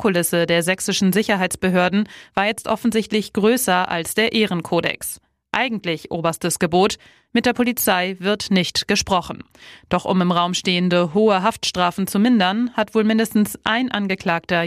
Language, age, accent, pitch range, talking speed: German, 30-49, German, 175-215 Hz, 140 wpm